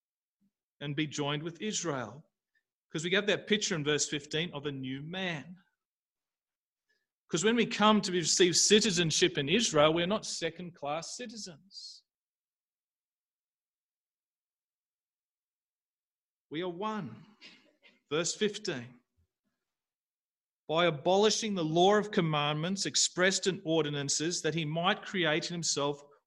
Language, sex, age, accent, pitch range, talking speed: English, male, 40-59, Australian, 145-185 Hz, 115 wpm